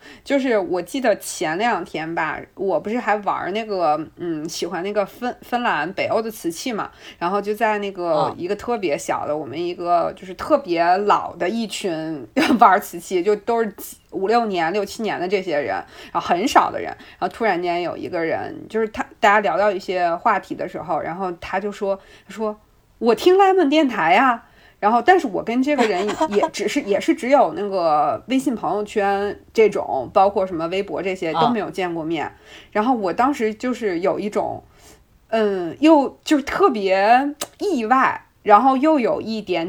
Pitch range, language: 190-275 Hz, Chinese